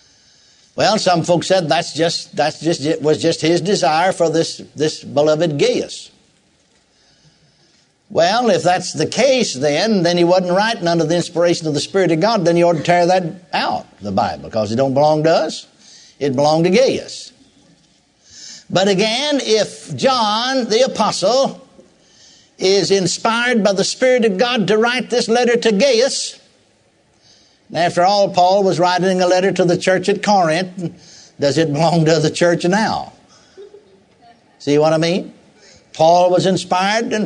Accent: American